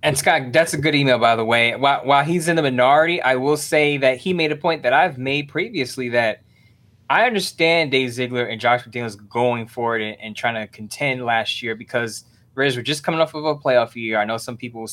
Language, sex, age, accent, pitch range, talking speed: English, male, 20-39, American, 115-145 Hz, 235 wpm